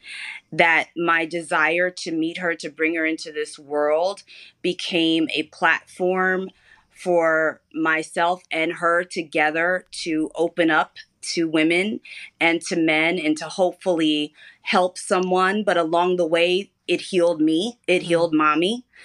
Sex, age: female, 30-49